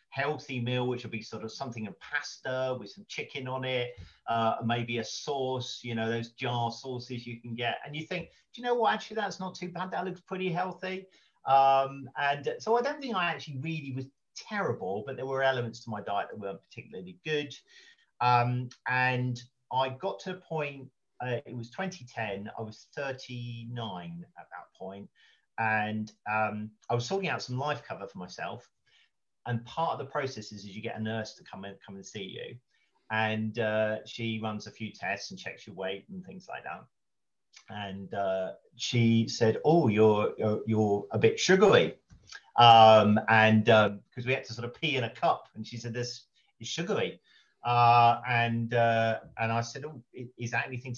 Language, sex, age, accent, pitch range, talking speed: English, male, 40-59, British, 110-135 Hz, 195 wpm